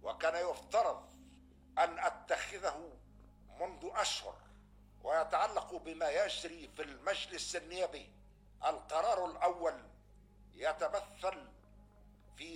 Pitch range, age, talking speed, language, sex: 145-205 Hz, 60-79, 75 wpm, Arabic, male